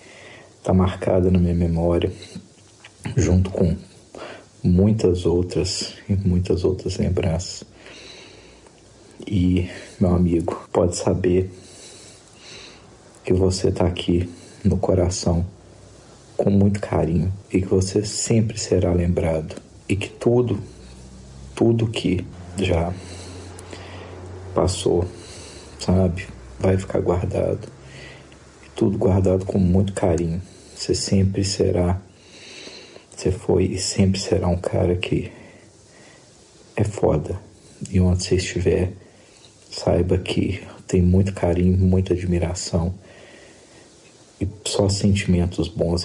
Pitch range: 90-100 Hz